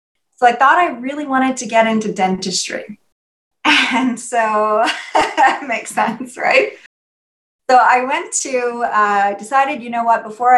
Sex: female